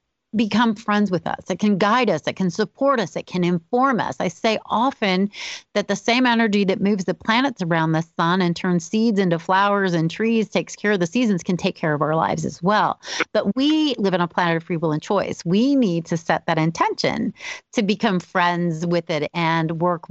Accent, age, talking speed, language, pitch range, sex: American, 30-49, 220 wpm, English, 175-235 Hz, female